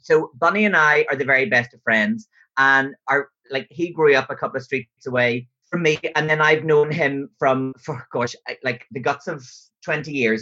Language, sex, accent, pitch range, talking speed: English, male, Irish, 125-155 Hz, 215 wpm